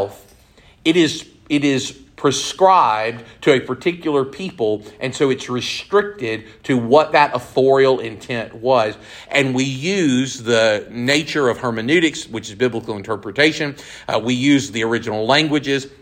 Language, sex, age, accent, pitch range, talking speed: English, male, 50-69, American, 120-145 Hz, 135 wpm